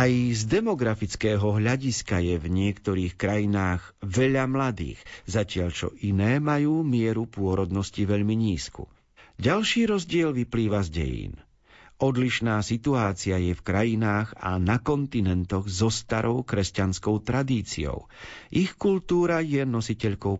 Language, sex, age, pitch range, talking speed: Slovak, male, 50-69, 95-130 Hz, 110 wpm